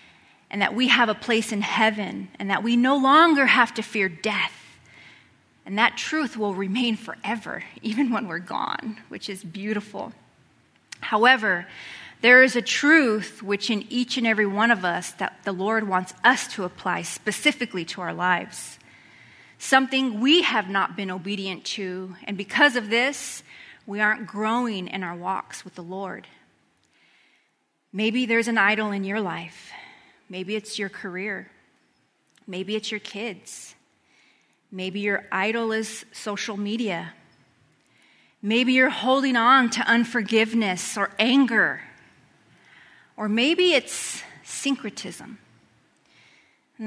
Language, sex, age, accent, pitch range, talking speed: English, female, 30-49, American, 200-245 Hz, 140 wpm